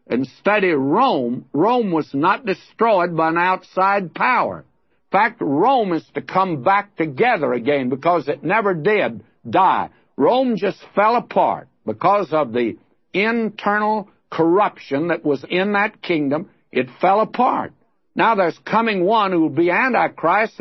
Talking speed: 145 wpm